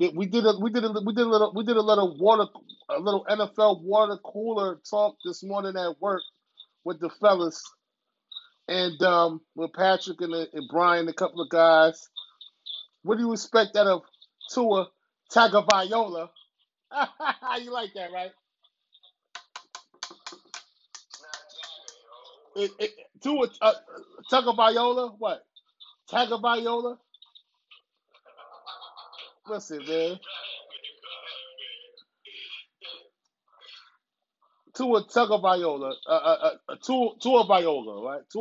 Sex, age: male, 30-49